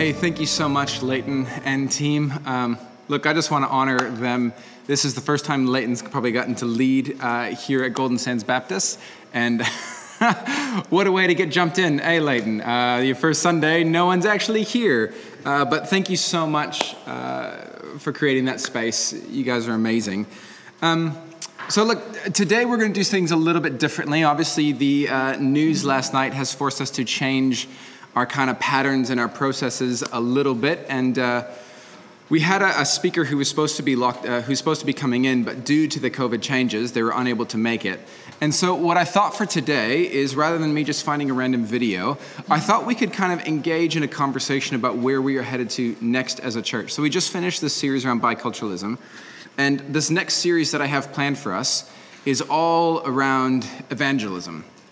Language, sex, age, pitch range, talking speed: English, male, 20-39, 125-160 Hz, 205 wpm